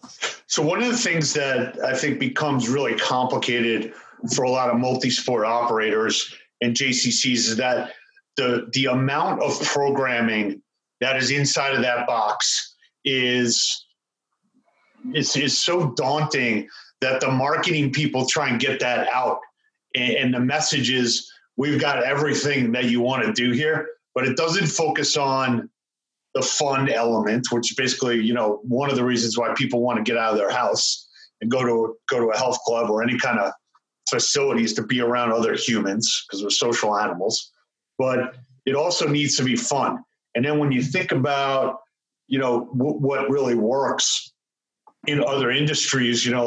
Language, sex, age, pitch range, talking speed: English, male, 40-59, 120-140 Hz, 165 wpm